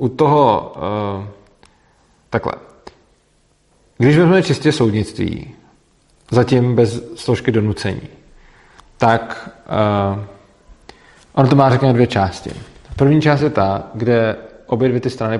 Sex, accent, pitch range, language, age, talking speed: male, native, 105-120 Hz, Czech, 40-59, 115 wpm